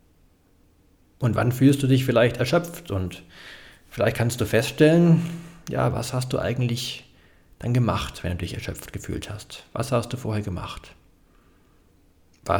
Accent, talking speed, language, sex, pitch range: German, 150 wpm, German, male, 100-135 Hz